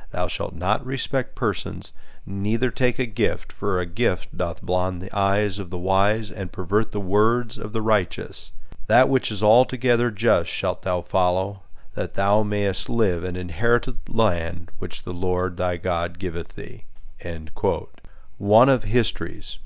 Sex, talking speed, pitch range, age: male, 165 wpm, 85-110 Hz, 40-59